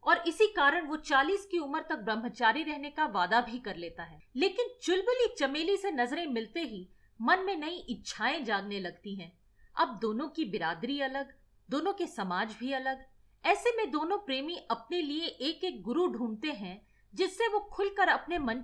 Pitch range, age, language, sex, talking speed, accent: 235-345 Hz, 40-59, Hindi, female, 180 wpm, native